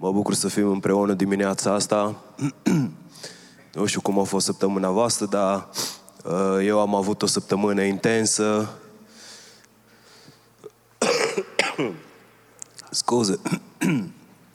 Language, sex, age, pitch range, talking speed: Romanian, male, 20-39, 100-115 Hz, 90 wpm